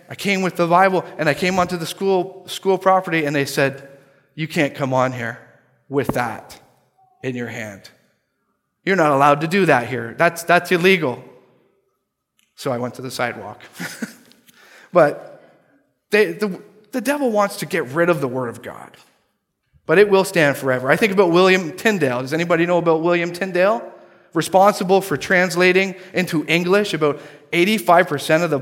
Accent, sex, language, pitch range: American, male, English, 145-185 Hz